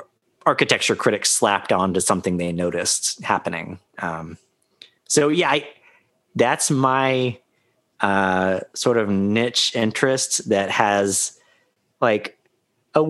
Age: 30-49